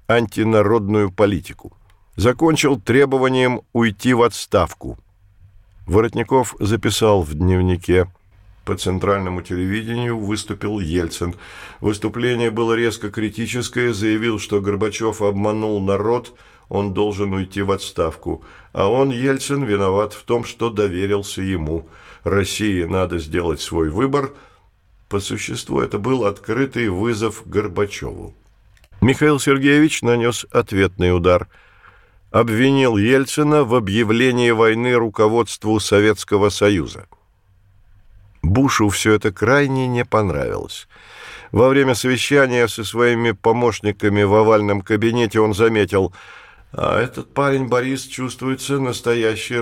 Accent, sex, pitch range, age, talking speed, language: native, male, 100-120 Hz, 50-69, 105 wpm, Russian